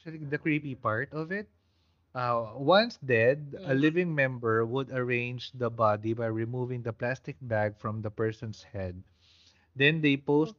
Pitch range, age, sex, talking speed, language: 105-135 Hz, 20-39, male, 155 wpm, Filipino